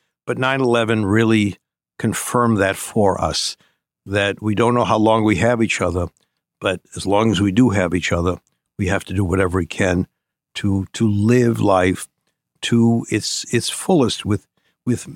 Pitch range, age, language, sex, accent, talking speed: 95-120 Hz, 60-79, English, male, American, 170 wpm